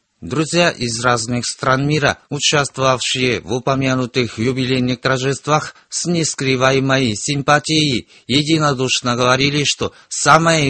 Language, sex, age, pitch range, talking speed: Russian, male, 50-69, 125-150 Hz, 95 wpm